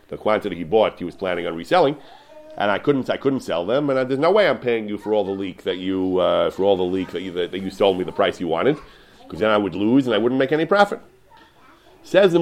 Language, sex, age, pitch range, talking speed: English, male, 40-59, 100-140 Hz, 285 wpm